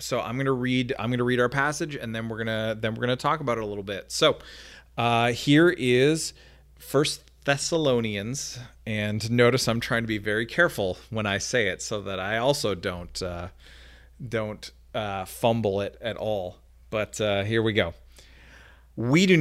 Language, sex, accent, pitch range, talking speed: English, male, American, 105-145 Hz, 195 wpm